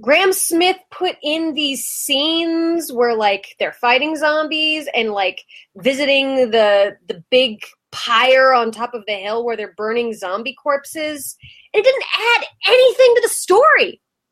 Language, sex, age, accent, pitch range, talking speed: English, female, 20-39, American, 240-370 Hz, 150 wpm